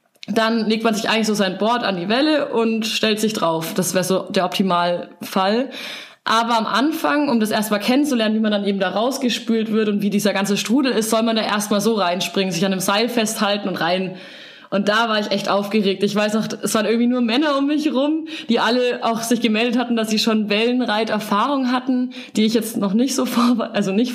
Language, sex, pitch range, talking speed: German, female, 210-245 Hz, 225 wpm